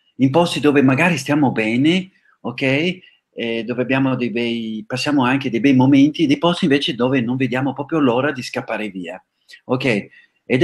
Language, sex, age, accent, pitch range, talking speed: Italian, male, 40-59, native, 110-145 Hz, 170 wpm